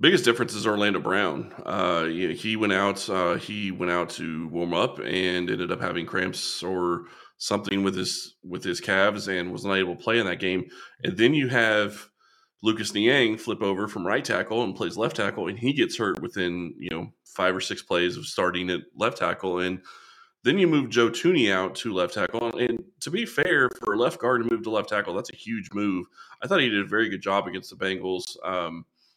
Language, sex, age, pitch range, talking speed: English, male, 20-39, 90-110 Hz, 220 wpm